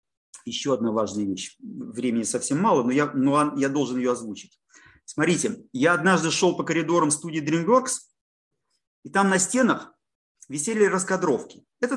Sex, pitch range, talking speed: male, 145-225 Hz, 145 wpm